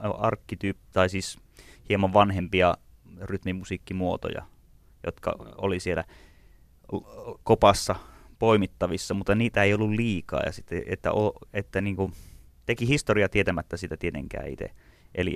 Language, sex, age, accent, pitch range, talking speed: Finnish, male, 30-49, native, 85-100 Hz, 115 wpm